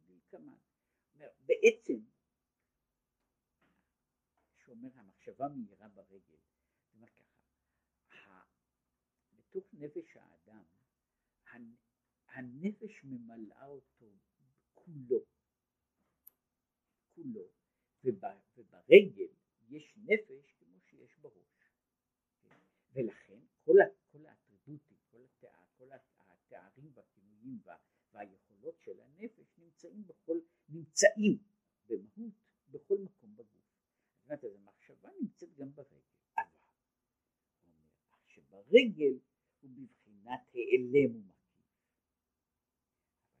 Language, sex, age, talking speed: Hebrew, male, 60-79, 60 wpm